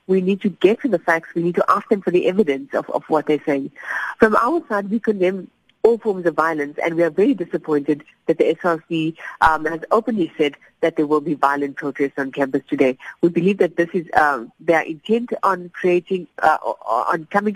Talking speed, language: 215 wpm, English